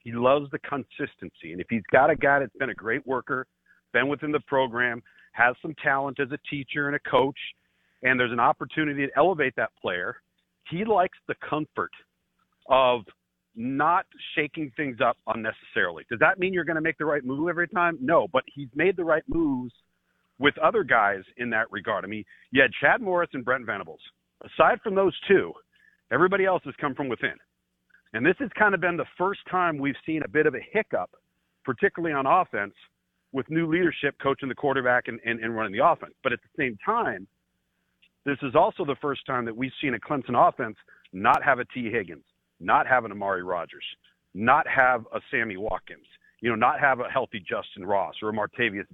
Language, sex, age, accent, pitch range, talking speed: English, male, 40-59, American, 120-165 Hz, 200 wpm